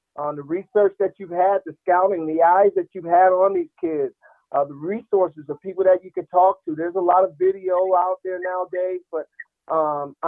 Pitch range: 175-200 Hz